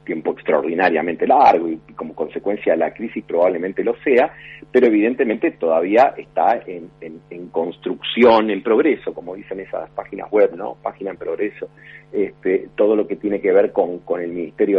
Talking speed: 170 wpm